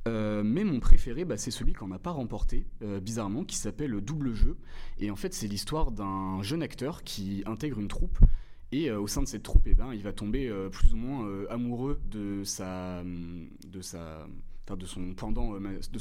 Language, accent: French, French